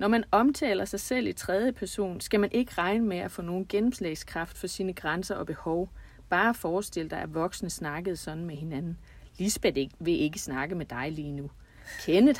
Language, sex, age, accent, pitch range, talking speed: Danish, female, 30-49, native, 175-215 Hz, 200 wpm